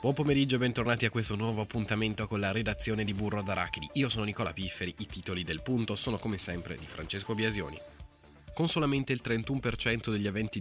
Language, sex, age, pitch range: Italian, male, 20-39, 90-115 Hz